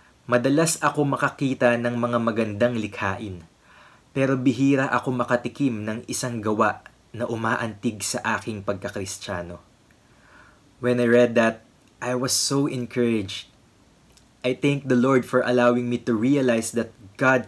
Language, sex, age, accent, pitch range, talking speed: English, male, 20-39, Filipino, 105-130 Hz, 130 wpm